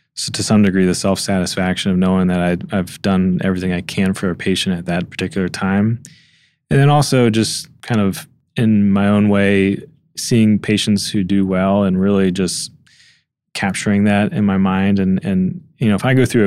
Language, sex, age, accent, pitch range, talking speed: English, male, 20-39, American, 90-105 Hz, 185 wpm